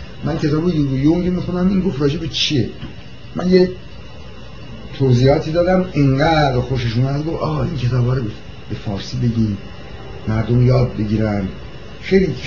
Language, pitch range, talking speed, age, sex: Persian, 115-155 Hz, 125 wpm, 60-79, male